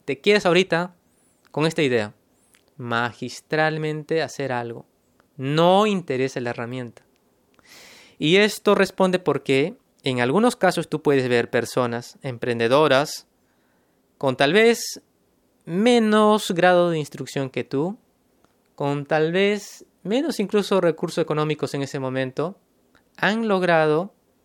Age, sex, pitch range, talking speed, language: 20-39, male, 130-185 Hz, 115 wpm, Spanish